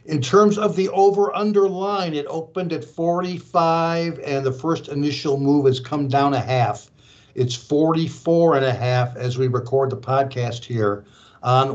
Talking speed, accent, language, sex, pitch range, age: 165 wpm, American, English, male, 130-165 Hz, 60-79